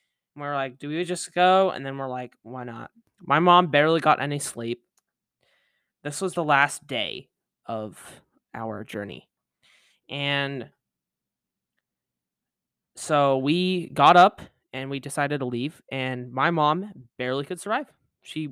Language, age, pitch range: English, 20-39, 130-175 Hz